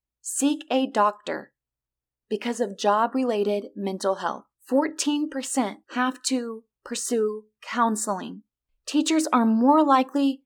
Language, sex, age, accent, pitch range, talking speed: English, female, 20-39, American, 215-270 Hz, 105 wpm